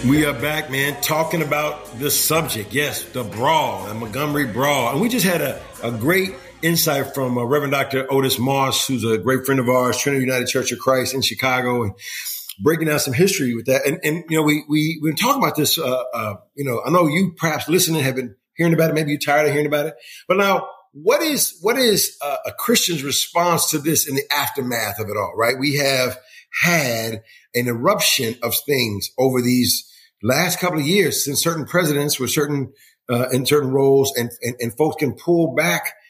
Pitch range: 125-155 Hz